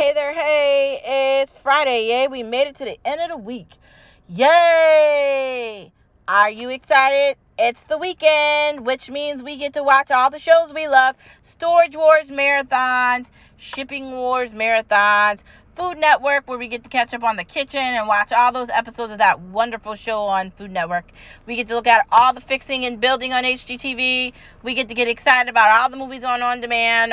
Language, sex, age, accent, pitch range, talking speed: English, female, 30-49, American, 220-285 Hz, 190 wpm